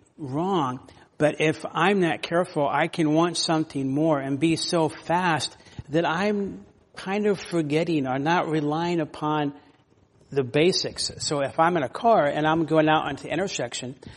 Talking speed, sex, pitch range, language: 165 wpm, male, 140-170 Hz, English